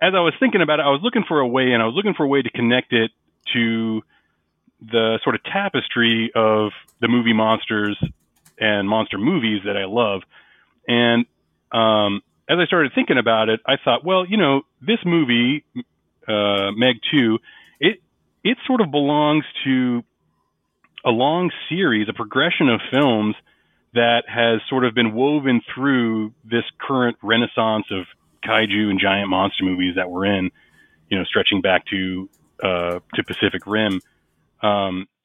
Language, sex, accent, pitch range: English, male, American, 100-125 Hz